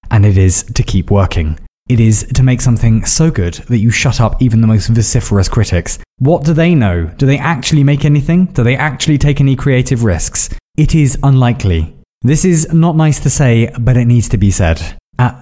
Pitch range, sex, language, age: 105-135 Hz, male, English, 20-39